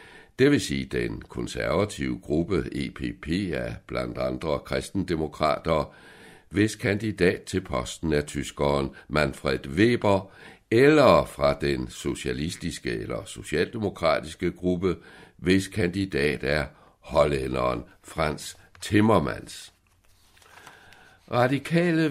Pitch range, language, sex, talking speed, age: 70-95 Hz, Danish, male, 90 wpm, 60-79